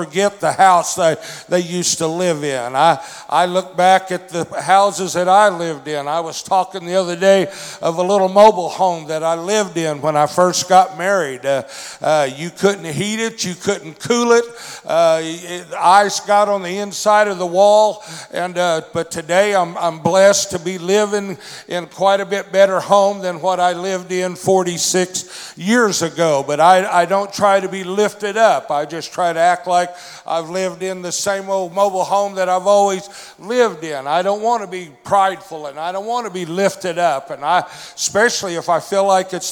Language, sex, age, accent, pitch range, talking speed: English, male, 60-79, American, 170-195 Hz, 205 wpm